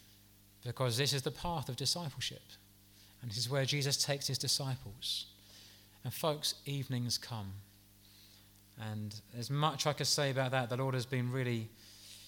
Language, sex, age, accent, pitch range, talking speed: English, male, 30-49, British, 100-145 Hz, 155 wpm